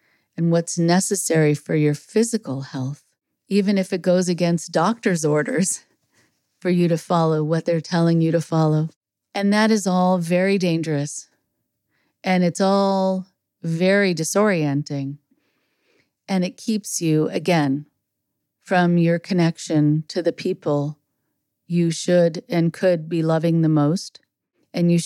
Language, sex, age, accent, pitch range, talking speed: English, female, 40-59, American, 155-190 Hz, 135 wpm